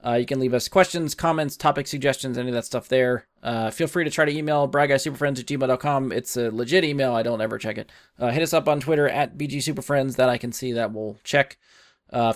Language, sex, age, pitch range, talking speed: English, male, 20-39, 115-140 Hz, 240 wpm